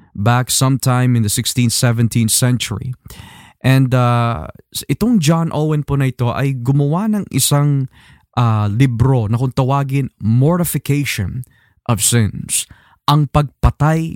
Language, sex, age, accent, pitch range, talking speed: Filipino, male, 20-39, native, 120-150 Hz, 125 wpm